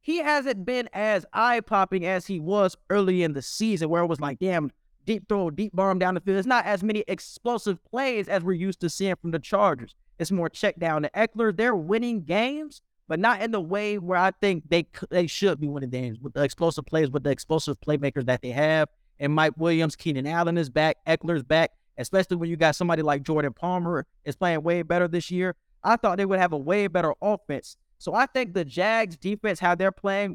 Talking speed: 225 wpm